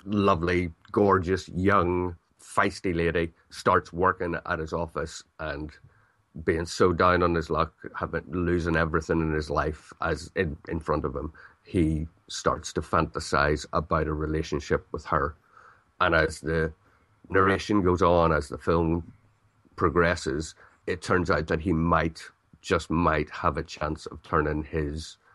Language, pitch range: English, 80-90 Hz